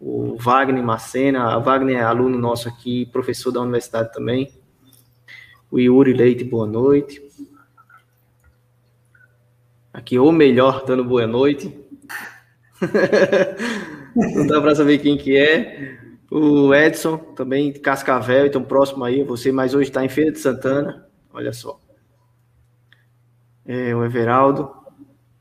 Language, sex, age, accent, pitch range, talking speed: Portuguese, male, 20-39, Brazilian, 120-140 Hz, 125 wpm